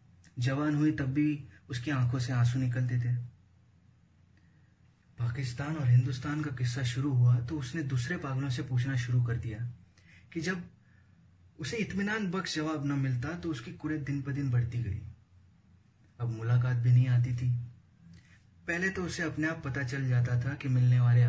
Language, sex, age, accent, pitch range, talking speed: Hindi, male, 20-39, native, 115-145 Hz, 170 wpm